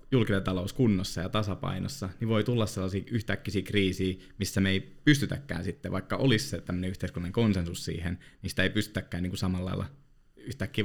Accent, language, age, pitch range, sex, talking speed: native, Finnish, 20-39, 90-105 Hz, male, 160 wpm